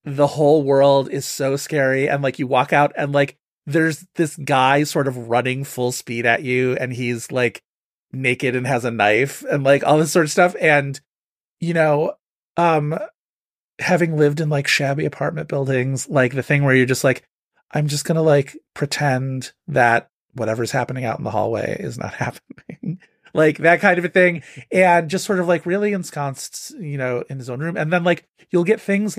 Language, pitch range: English, 140-180 Hz